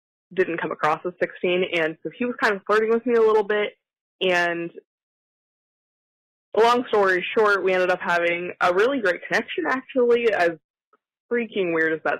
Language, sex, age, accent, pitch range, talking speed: English, female, 20-39, American, 170-210 Hz, 170 wpm